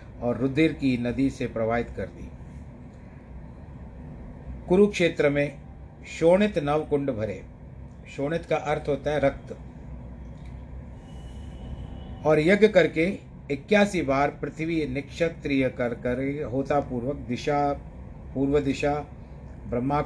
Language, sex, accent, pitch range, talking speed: Hindi, male, native, 115-145 Hz, 100 wpm